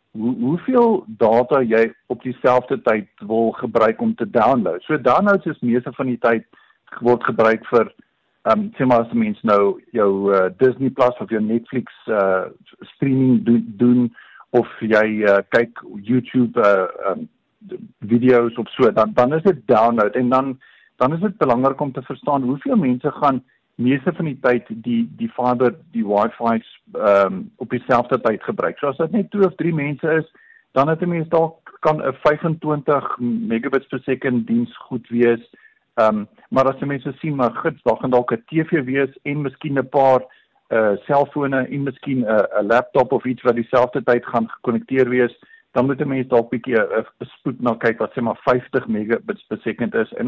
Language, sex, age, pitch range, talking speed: English, male, 50-69, 120-150 Hz, 180 wpm